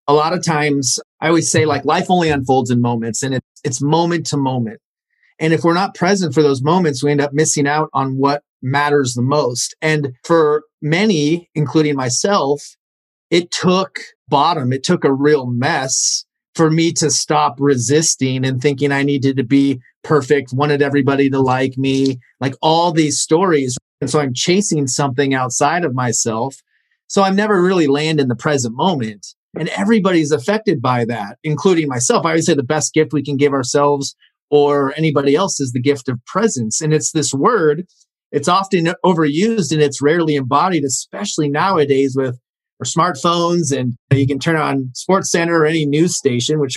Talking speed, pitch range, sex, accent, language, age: 180 wpm, 135-165 Hz, male, American, English, 30-49